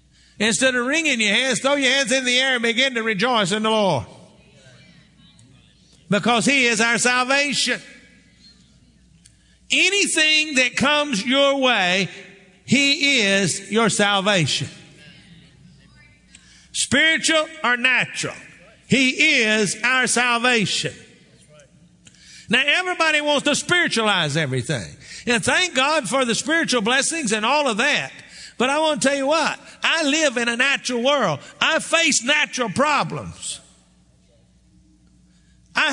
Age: 50-69